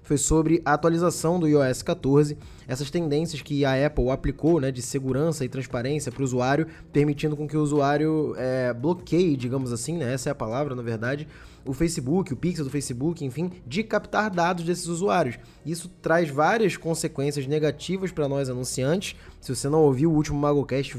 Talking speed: 185 wpm